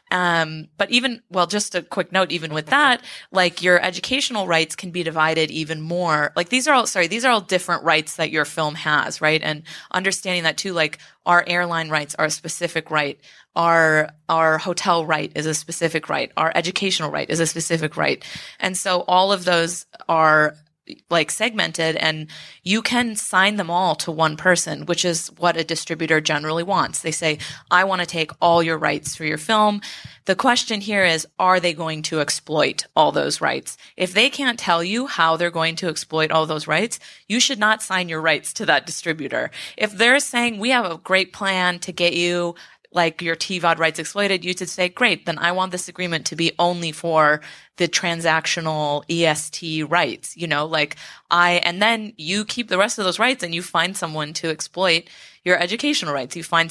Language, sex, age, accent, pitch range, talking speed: English, female, 20-39, American, 160-185 Hz, 200 wpm